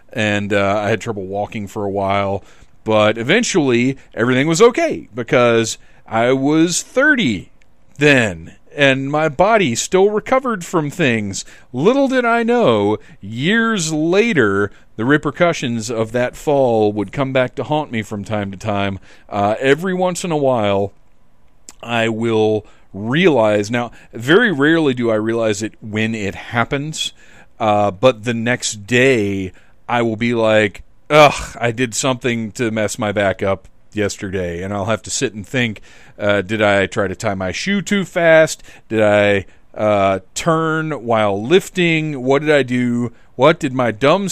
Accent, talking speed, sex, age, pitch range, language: American, 155 wpm, male, 40-59, 105-145 Hz, English